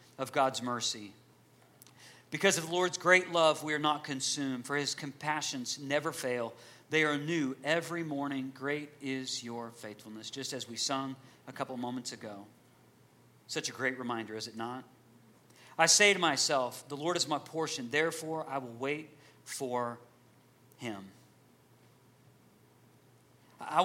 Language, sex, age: English, male, 40-59